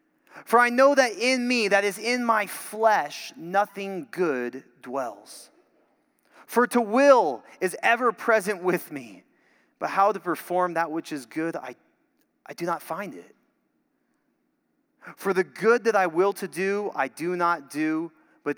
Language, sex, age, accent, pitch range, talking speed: English, male, 30-49, American, 190-235 Hz, 160 wpm